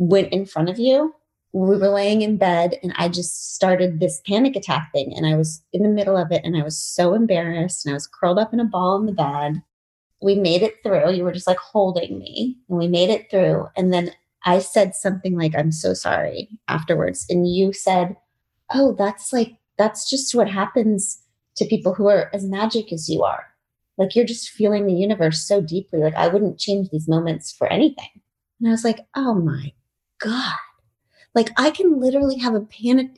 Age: 30-49